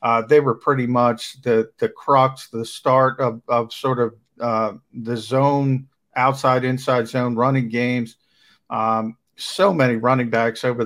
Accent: American